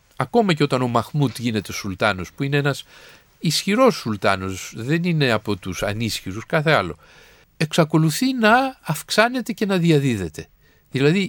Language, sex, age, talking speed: Greek, male, 50-69, 145 wpm